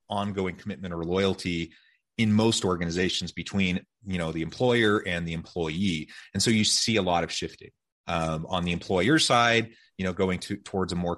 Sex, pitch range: male, 85-105 Hz